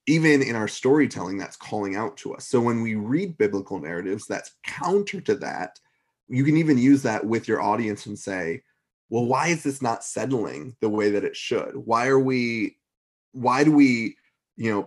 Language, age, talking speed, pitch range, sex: English, 20-39, 195 wpm, 105-135 Hz, male